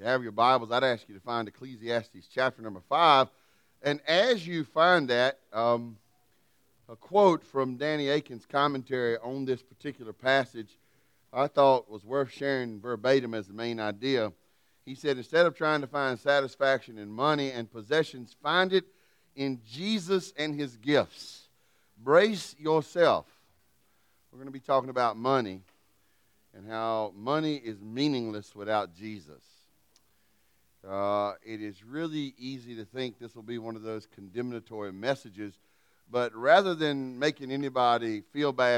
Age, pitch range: 40-59, 115-145 Hz